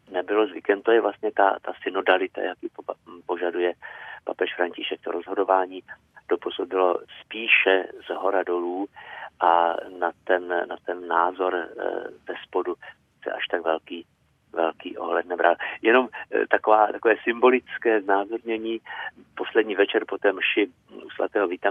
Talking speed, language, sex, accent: 135 wpm, Czech, male, native